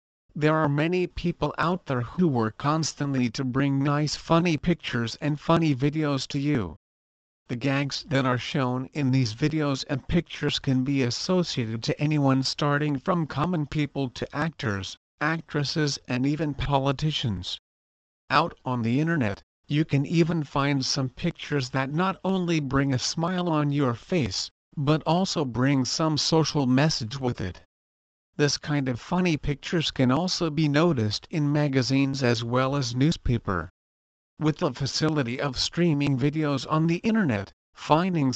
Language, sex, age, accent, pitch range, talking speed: English, male, 50-69, American, 125-155 Hz, 150 wpm